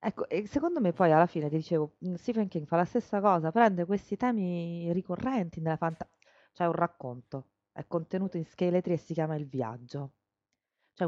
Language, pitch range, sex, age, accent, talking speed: Italian, 145-205 Hz, female, 30-49, native, 185 wpm